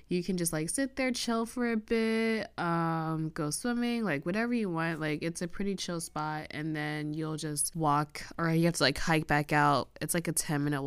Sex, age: female, 20-39